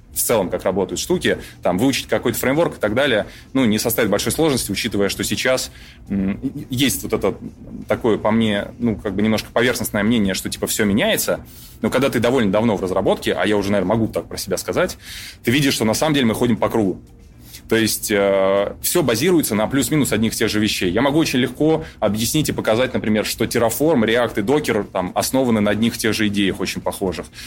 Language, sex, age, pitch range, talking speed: Russian, male, 20-39, 100-130 Hz, 210 wpm